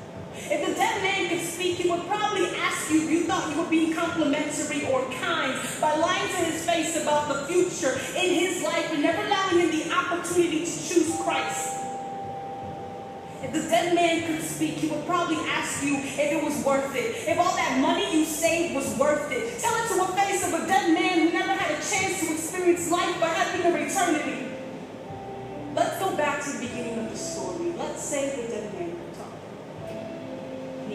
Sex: female